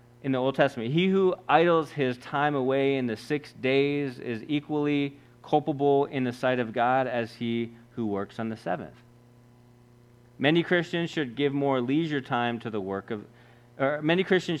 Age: 30-49